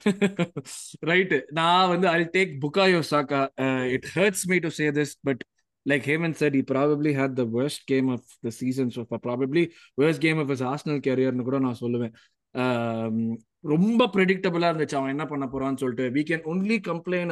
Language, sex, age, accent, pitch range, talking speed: Tamil, male, 20-39, native, 135-175 Hz, 195 wpm